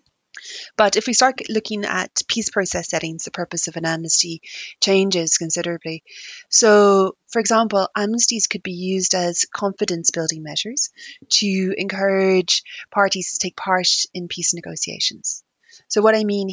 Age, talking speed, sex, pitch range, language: 30-49, 145 wpm, female, 175-205 Hz, English